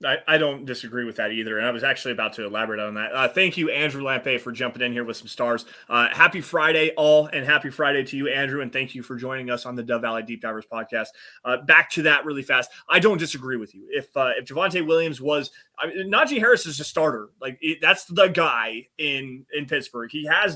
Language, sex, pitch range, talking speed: English, male, 125-170 Hz, 250 wpm